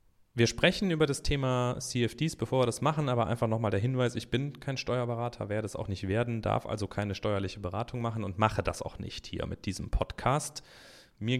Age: 30-49